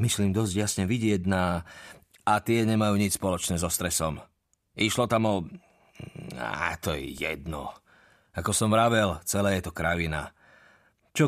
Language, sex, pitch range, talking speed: Slovak, male, 95-120 Hz, 145 wpm